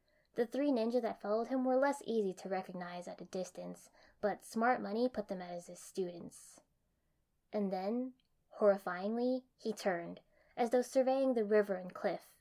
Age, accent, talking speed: 10-29, American, 165 wpm